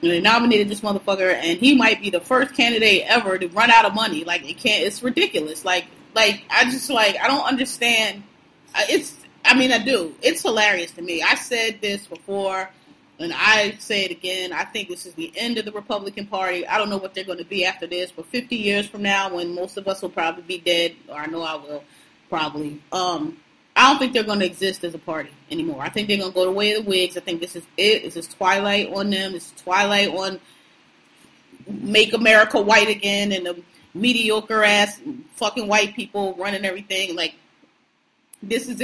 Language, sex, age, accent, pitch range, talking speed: English, female, 20-39, American, 180-220 Hz, 215 wpm